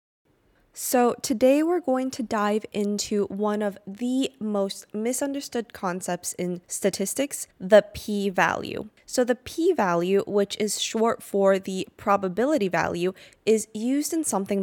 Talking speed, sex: 125 wpm, female